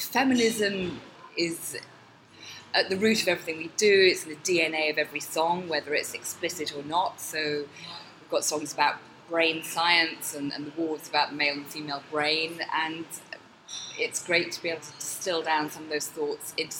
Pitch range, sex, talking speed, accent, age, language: 150-180 Hz, female, 180 wpm, British, 20-39, English